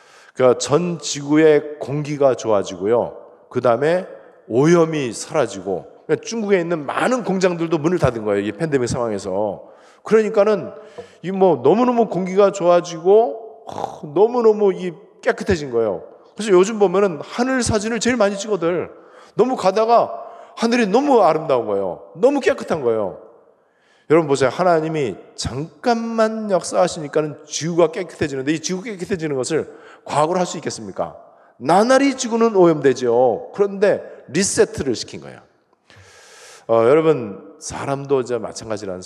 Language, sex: Korean, male